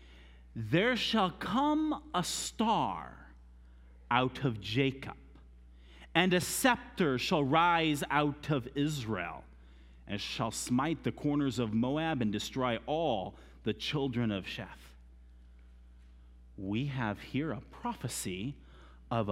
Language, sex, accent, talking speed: English, male, American, 110 wpm